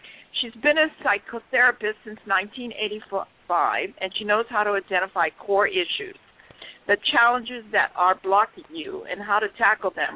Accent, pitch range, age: American, 195-245 Hz, 50-69